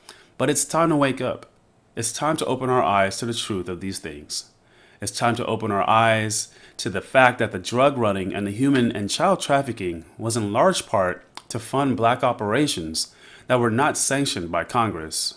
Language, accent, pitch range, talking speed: English, American, 105-130 Hz, 200 wpm